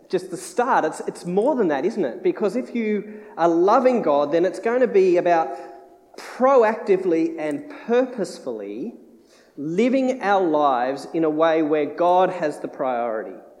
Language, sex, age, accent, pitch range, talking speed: English, male, 40-59, Australian, 145-205 Hz, 155 wpm